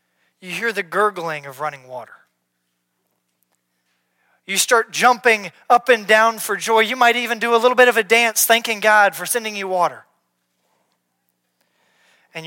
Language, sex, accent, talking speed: English, male, American, 155 wpm